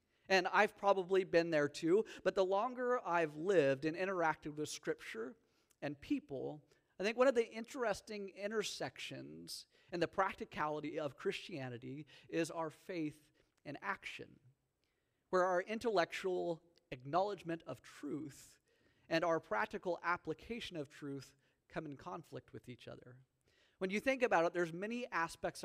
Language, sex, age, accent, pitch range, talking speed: English, male, 40-59, American, 145-190 Hz, 140 wpm